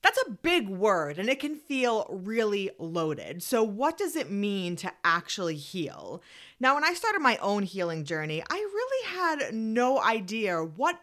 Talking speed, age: 175 wpm, 30-49